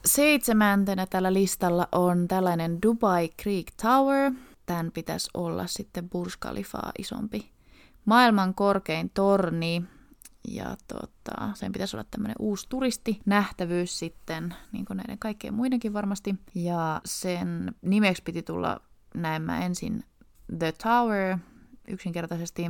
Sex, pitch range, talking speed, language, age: female, 175-225 Hz, 115 wpm, Finnish, 20-39